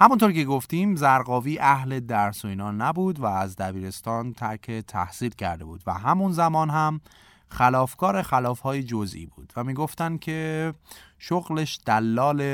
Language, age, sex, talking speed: Persian, 30-49, male, 135 wpm